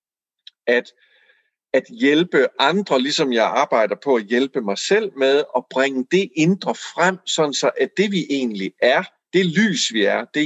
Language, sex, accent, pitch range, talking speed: Danish, male, native, 140-225 Hz, 170 wpm